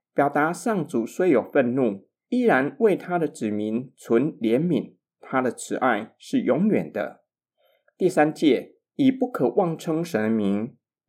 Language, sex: Chinese, male